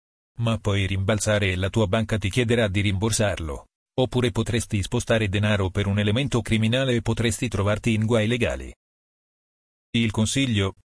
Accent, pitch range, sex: native, 105-120 Hz, male